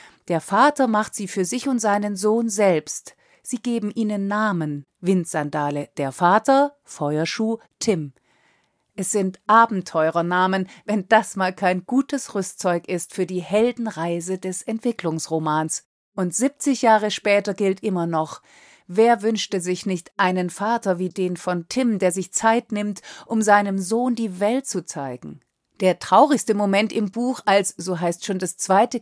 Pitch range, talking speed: 185-225 Hz, 150 wpm